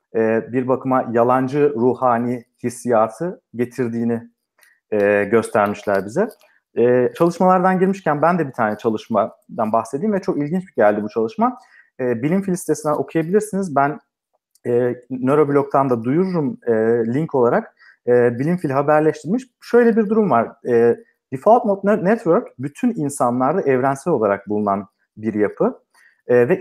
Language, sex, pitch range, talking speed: Turkish, male, 120-195 Hz, 125 wpm